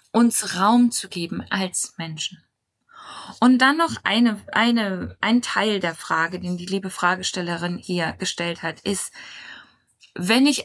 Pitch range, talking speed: 185-230 Hz, 130 wpm